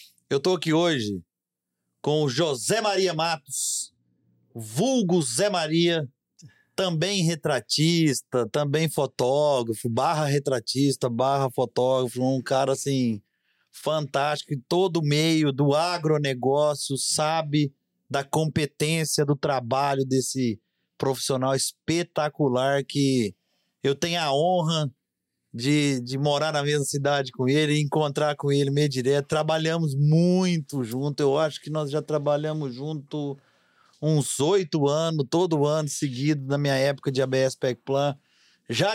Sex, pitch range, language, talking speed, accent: male, 135-160 Hz, Portuguese, 120 wpm, Brazilian